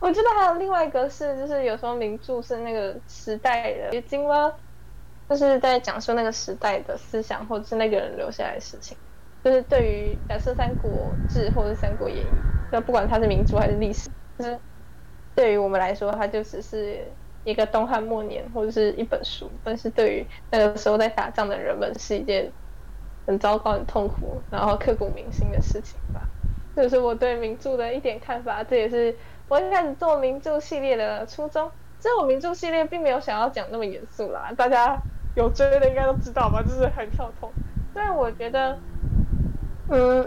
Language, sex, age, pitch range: Chinese, female, 10-29, 225-290 Hz